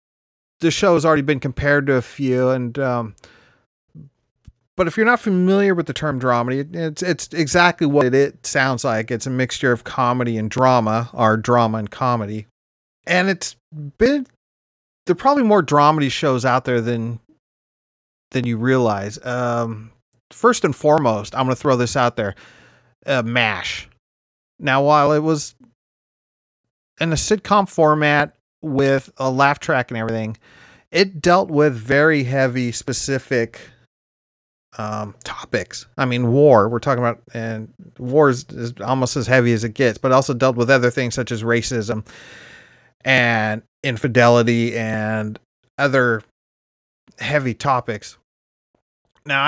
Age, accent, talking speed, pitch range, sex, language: 30-49, American, 150 wpm, 115-150 Hz, male, English